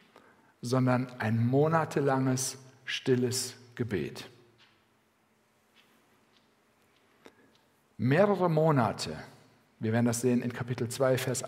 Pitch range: 115-140 Hz